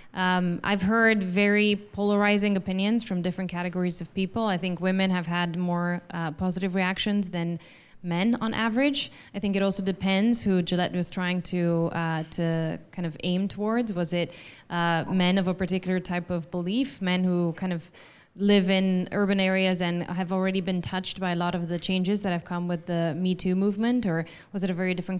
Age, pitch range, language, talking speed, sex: 20-39, 180-200 Hz, English, 200 wpm, female